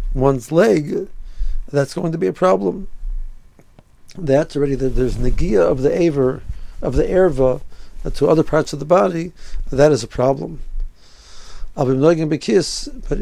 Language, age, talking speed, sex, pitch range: English, 60-79, 165 wpm, male, 130-155 Hz